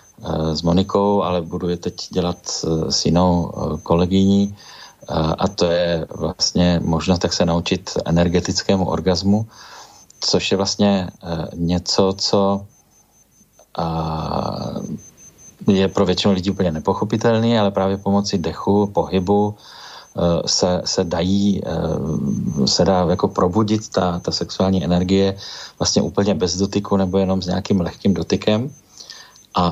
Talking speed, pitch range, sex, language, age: 115 wpm, 90-100 Hz, male, Slovak, 40-59